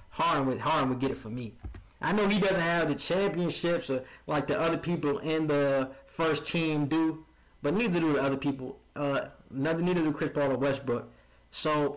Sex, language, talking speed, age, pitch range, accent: male, English, 200 wpm, 20-39, 140-205 Hz, American